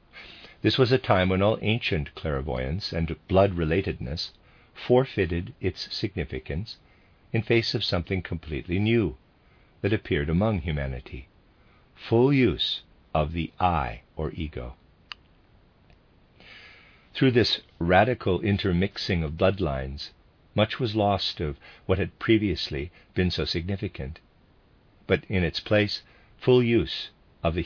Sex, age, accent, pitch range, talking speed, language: male, 50-69, American, 80-105 Hz, 115 wpm, English